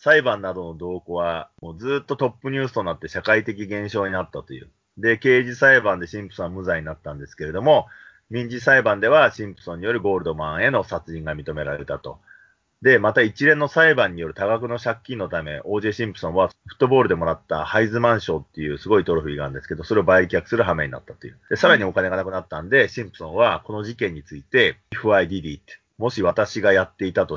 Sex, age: male, 30-49